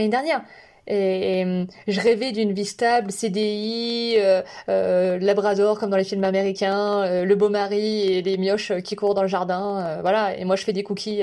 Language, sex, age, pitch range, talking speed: French, female, 20-39, 195-230 Hz, 200 wpm